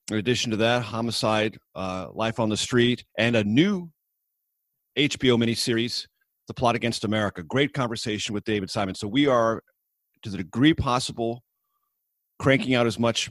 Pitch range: 105-130 Hz